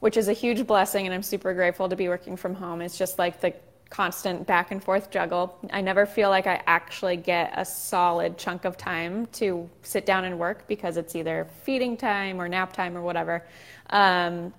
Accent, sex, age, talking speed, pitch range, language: American, female, 20-39, 210 wpm, 175-205 Hz, English